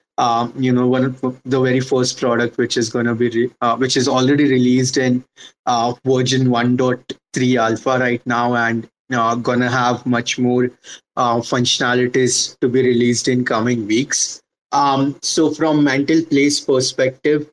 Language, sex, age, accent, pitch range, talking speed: English, male, 30-49, Indian, 120-130 Hz, 160 wpm